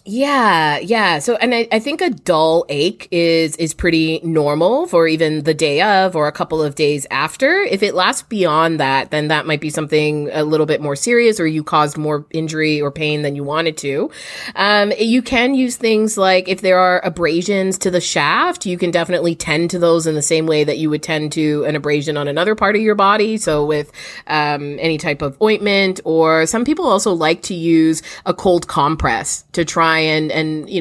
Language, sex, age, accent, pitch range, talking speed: English, female, 20-39, American, 155-200 Hz, 210 wpm